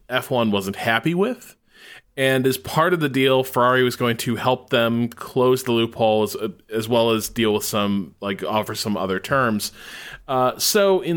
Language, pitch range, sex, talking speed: English, 100-135 Hz, male, 185 wpm